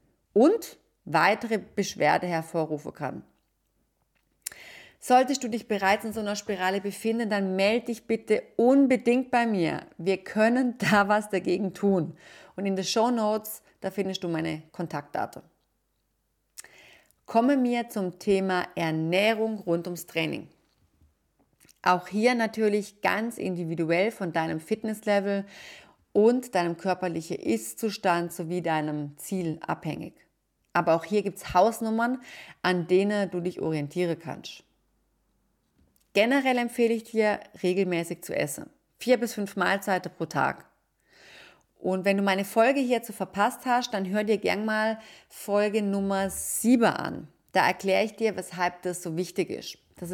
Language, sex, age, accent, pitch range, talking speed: German, female, 30-49, German, 180-220 Hz, 135 wpm